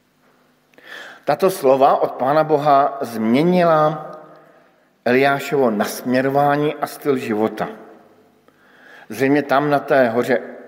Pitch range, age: 115-145 Hz, 50-69